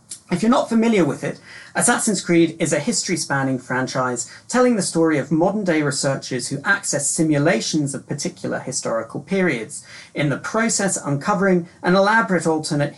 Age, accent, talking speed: 40-59, British, 150 wpm